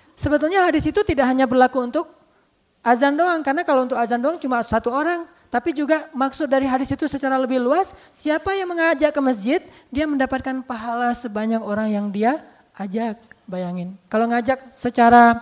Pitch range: 220-280 Hz